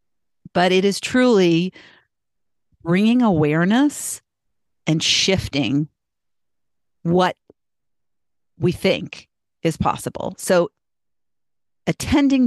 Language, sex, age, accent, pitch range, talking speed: English, female, 50-69, American, 155-190 Hz, 70 wpm